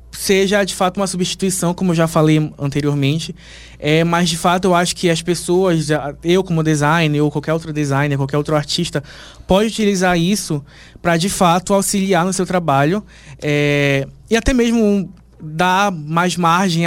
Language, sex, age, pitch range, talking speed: Portuguese, male, 20-39, 150-180 Hz, 165 wpm